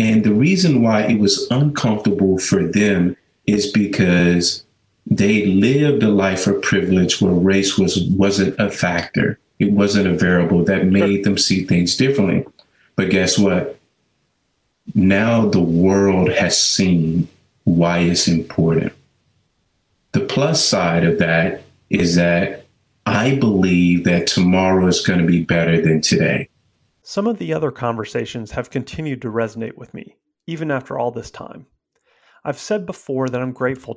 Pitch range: 100-130 Hz